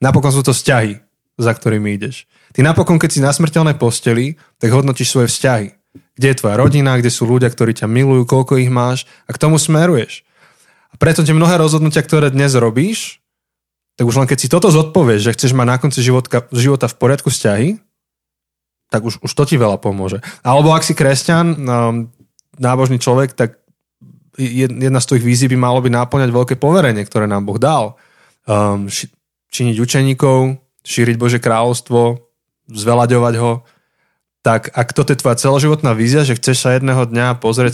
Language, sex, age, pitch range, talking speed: Slovak, male, 20-39, 115-140 Hz, 170 wpm